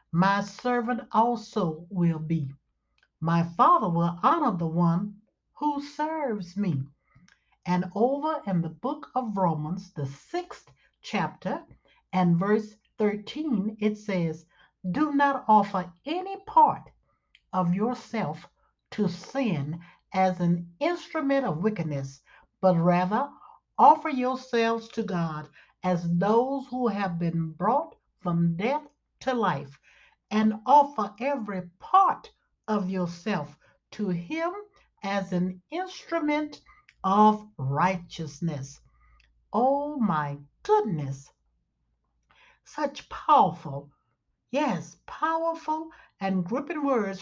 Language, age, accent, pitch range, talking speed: English, 60-79, American, 170-255 Hz, 105 wpm